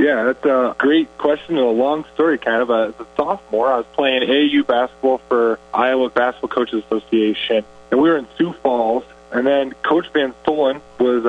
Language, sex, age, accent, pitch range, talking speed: English, male, 20-39, American, 120-145 Hz, 195 wpm